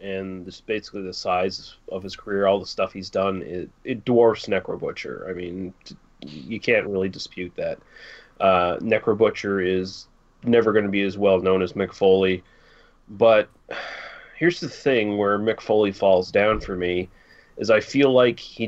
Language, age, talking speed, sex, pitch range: English, 30-49, 165 wpm, male, 100-115 Hz